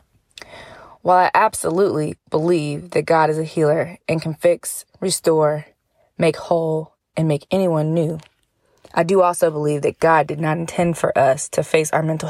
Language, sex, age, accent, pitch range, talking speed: English, female, 20-39, American, 155-190 Hz, 165 wpm